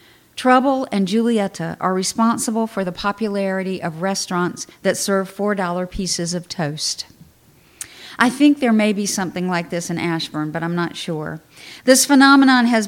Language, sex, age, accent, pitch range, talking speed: English, female, 50-69, American, 185-230 Hz, 155 wpm